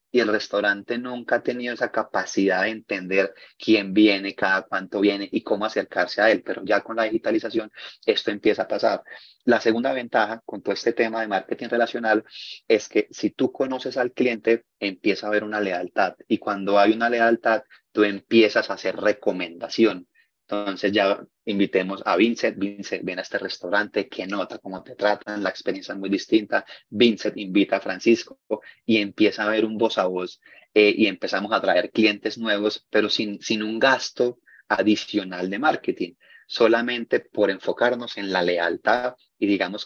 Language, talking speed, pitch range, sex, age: Spanish, 175 wpm, 100-115 Hz, male, 30-49